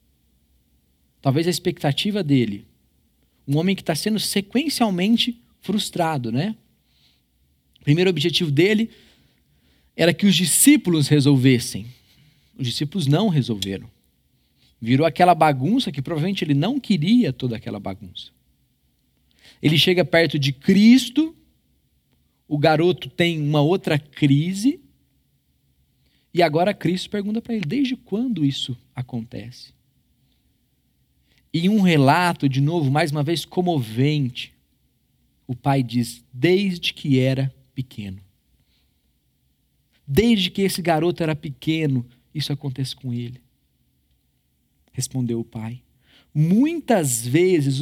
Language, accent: Portuguese, Brazilian